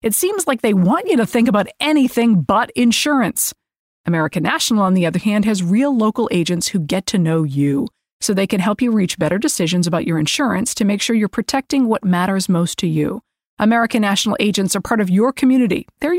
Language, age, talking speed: English, 40-59, 210 wpm